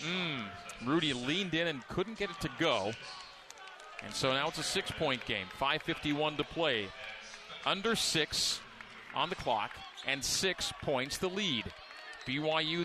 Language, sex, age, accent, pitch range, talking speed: English, male, 40-59, American, 145-185 Hz, 145 wpm